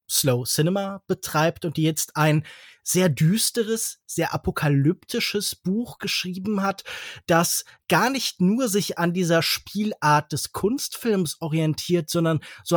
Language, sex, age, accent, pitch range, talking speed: German, male, 20-39, German, 145-185 Hz, 125 wpm